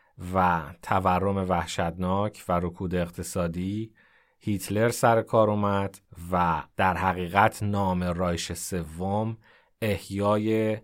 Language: Persian